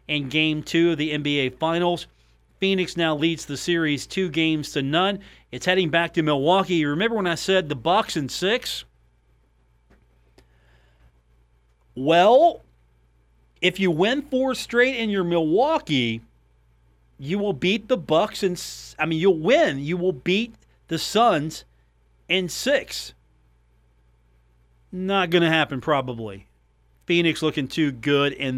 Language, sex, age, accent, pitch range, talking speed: English, male, 40-59, American, 125-175 Hz, 140 wpm